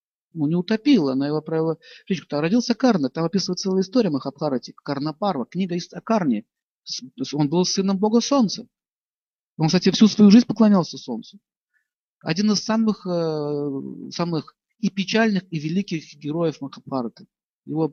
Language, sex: Russian, male